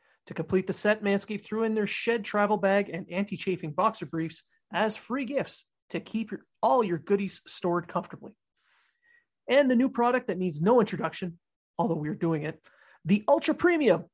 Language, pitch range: English, 175-220 Hz